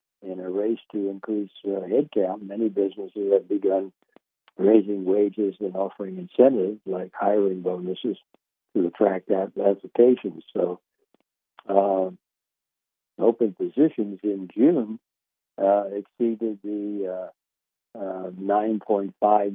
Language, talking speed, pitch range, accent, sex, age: English, 100 wpm, 95-105 Hz, American, male, 60-79